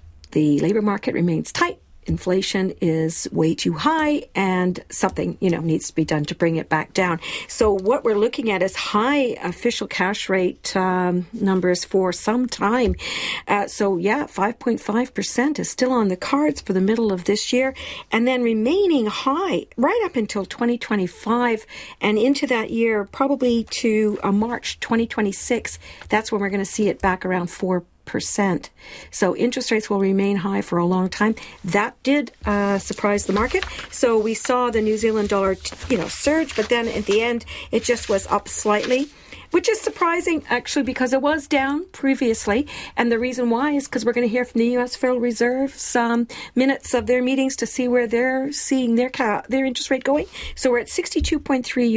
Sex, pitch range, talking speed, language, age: female, 200-265 Hz, 185 wpm, English, 50-69